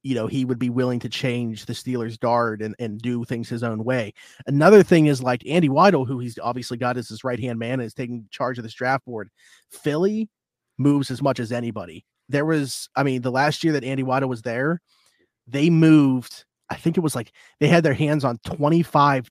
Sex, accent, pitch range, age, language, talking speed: male, American, 120-145 Hz, 30-49, English, 220 wpm